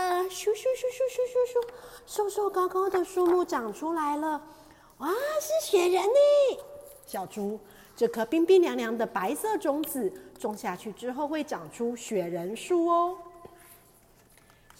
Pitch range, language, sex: 225-350 Hz, Chinese, female